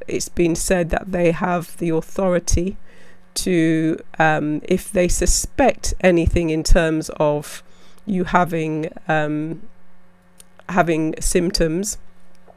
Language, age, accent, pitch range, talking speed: English, 40-59, British, 160-175 Hz, 105 wpm